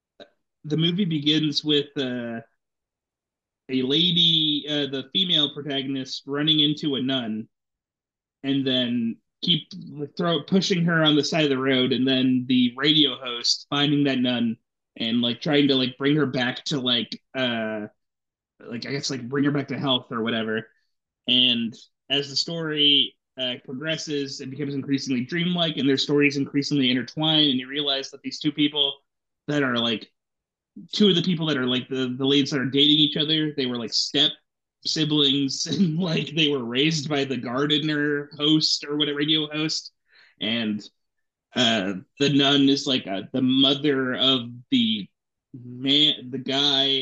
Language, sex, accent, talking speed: English, male, American, 165 wpm